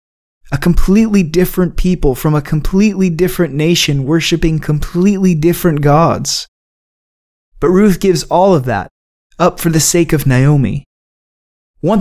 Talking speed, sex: 130 wpm, male